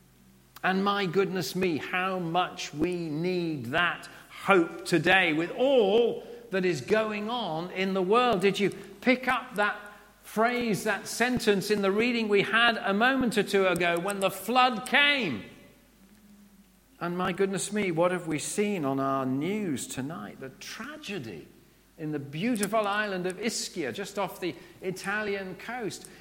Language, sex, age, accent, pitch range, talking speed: English, male, 50-69, British, 175-225 Hz, 155 wpm